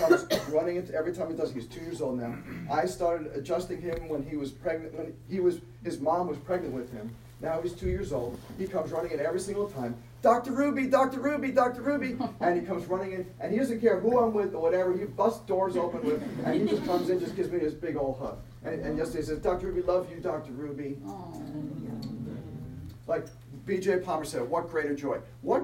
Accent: American